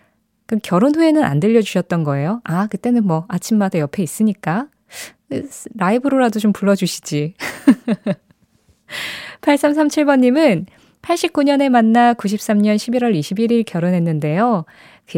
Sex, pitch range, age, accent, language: female, 175-235 Hz, 20-39, native, Korean